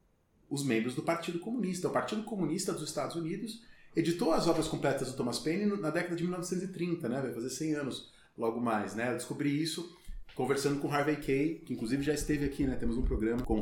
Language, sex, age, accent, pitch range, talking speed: Portuguese, male, 30-49, Brazilian, 110-165 Hz, 215 wpm